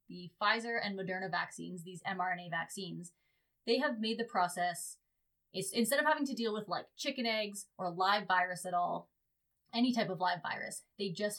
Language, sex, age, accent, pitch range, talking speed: English, female, 20-39, American, 185-230 Hz, 185 wpm